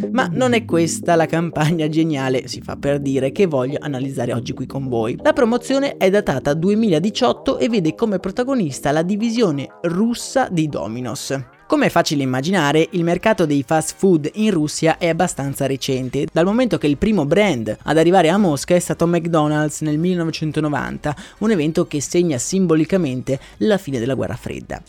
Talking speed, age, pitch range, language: 170 wpm, 20-39, 145-195 Hz, Italian